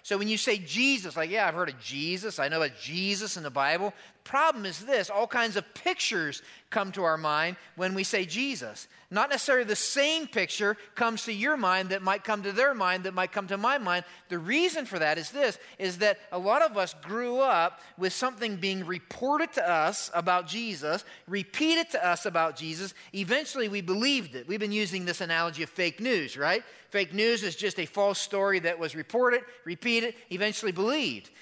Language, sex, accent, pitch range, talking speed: English, male, American, 185-235 Hz, 210 wpm